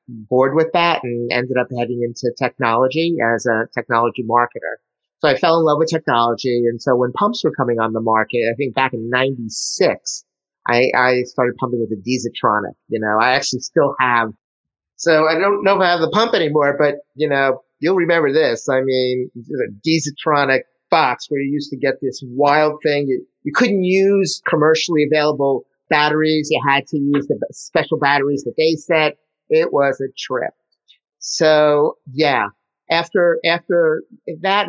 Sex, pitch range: male, 125-155 Hz